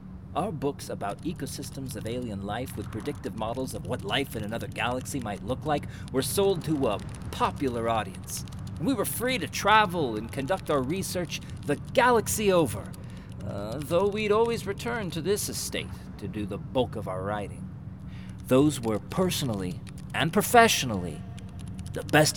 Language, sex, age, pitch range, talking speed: English, male, 40-59, 105-155 Hz, 160 wpm